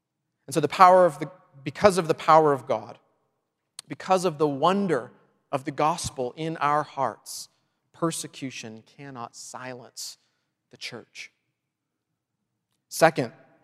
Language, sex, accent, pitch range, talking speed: English, male, American, 145-185 Hz, 125 wpm